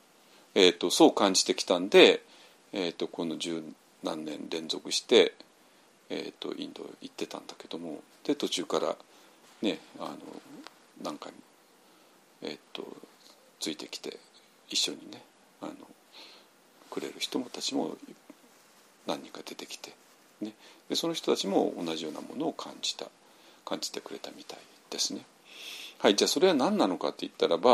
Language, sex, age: Japanese, male, 50-69